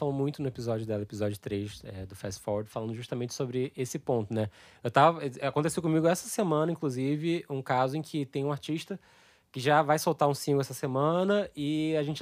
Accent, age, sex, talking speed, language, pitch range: Brazilian, 20-39, male, 200 wpm, Portuguese, 130-170 Hz